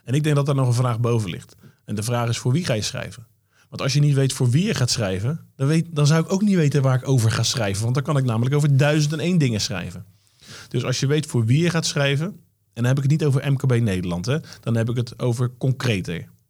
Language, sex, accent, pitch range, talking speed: Dutch, male, Dutch, 115-145 Hz, 285 wpm